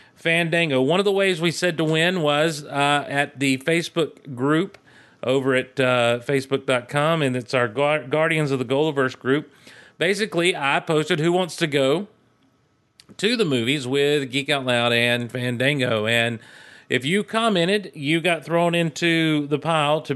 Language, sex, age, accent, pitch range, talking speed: English, male, 40-59, American, 135-175 Hz, 165 wpm